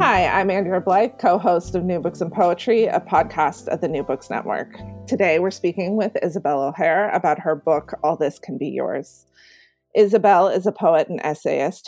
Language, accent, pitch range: English, American, 160-210 Hz